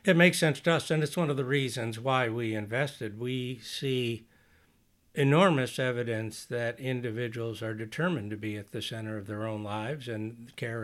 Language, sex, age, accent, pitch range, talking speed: English, male, 60-79, American, 110-130 Hz, 185 wpm